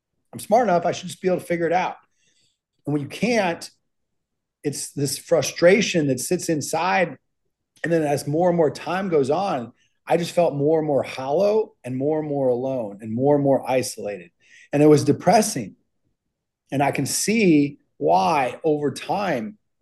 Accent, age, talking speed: American, 30-49, 180 wpm